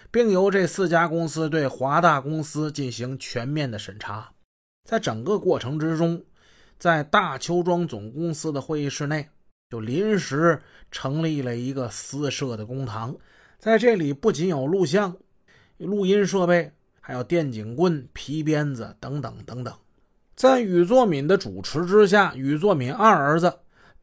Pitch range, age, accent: 130-190 Hz, 30-49, native